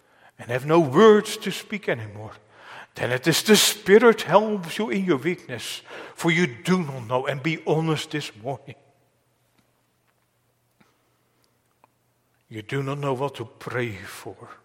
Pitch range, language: 115-165 Hz, English